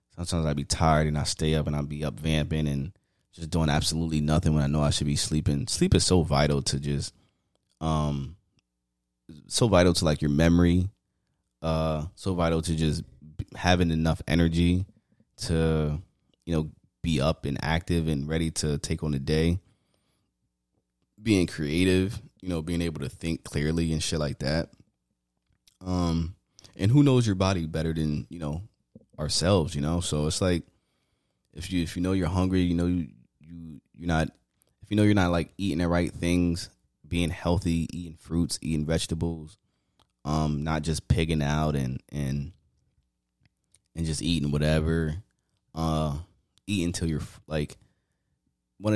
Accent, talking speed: American, 165 wpm